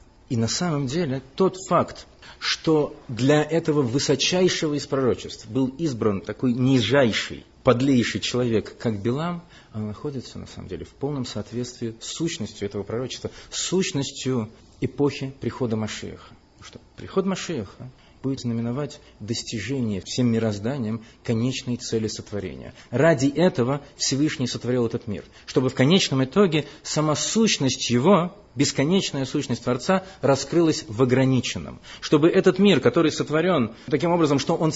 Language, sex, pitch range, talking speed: Russian, male, 115-155 Hz, 130 wpm